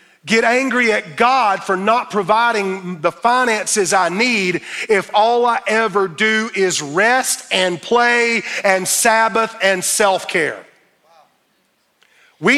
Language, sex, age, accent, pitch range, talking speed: English, male, 40-59, American, 215-285 Hz, 120 wpm